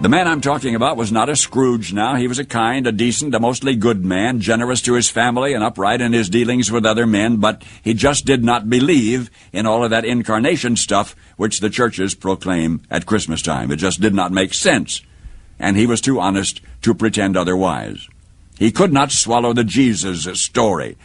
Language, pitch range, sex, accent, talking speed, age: English, 90-115 Hz, male, American, 205 wpm, 60-79